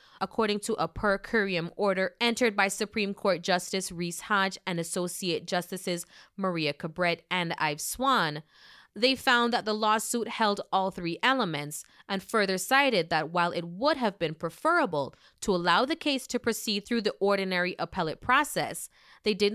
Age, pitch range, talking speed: 20-39, 170-230 Hz, 165 wpm